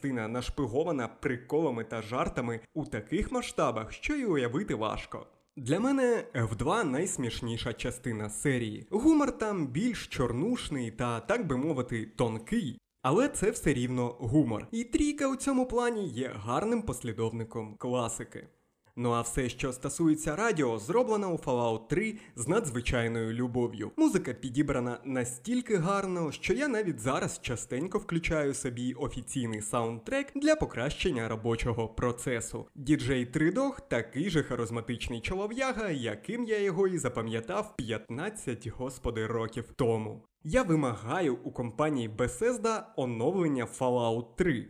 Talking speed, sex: 130 wpm, male